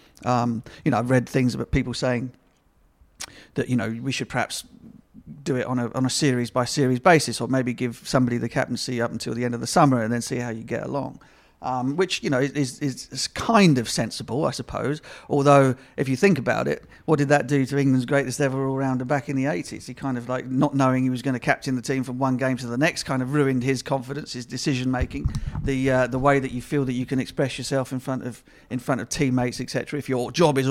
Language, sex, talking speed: English, male, 245 wpm